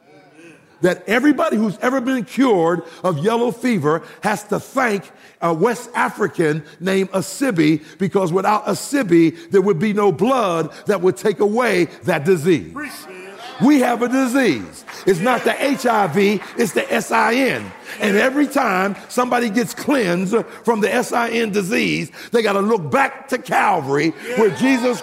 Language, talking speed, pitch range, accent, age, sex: English, 145 wpm, 145-240 Hz, American, 50-69, male